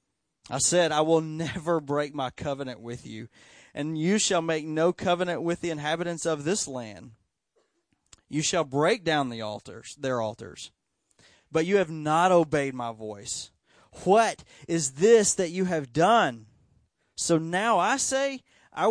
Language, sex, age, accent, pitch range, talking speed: English, male, 30-49, American, 130-180 Hz, 155 wpm